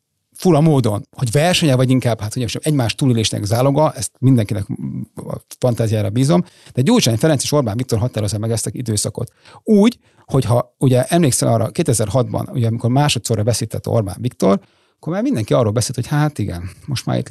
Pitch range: 115-145 Hz